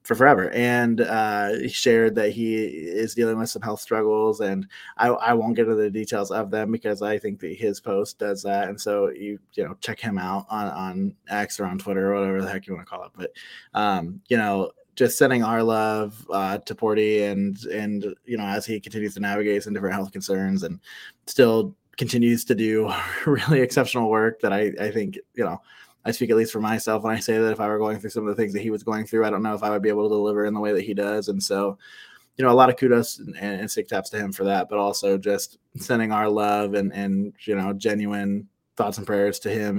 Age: 20-39